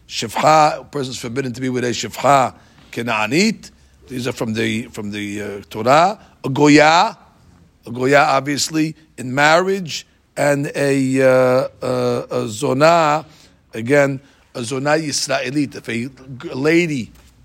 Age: 50-69